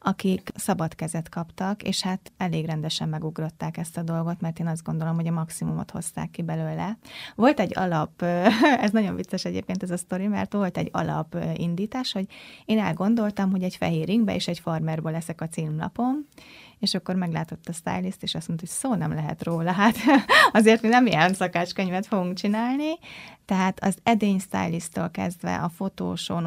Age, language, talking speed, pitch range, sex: 20-39, Hungarian, 175 wpm, 165-205 Hz, female